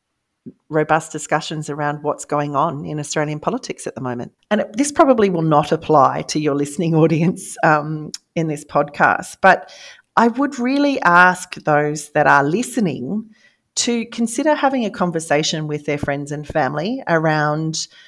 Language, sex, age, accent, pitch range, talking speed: English, female, 40-59, Australian, 145-195 Hz, 155 wpm